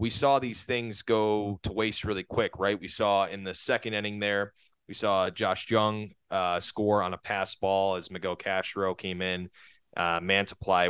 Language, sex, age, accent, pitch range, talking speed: English, male, 30-49, American, 90-110 Hz, 185 wpm